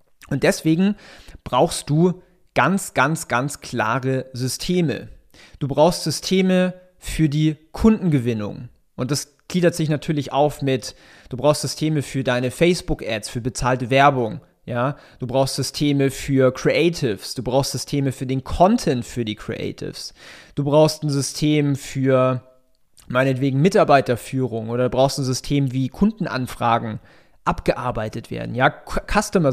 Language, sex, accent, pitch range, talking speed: German, male, German, 125-155 Hz, 130 wpm